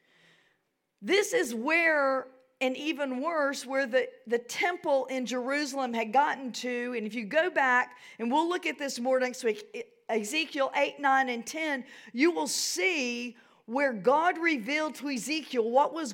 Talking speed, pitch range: 160 wpm, 210-280 Hz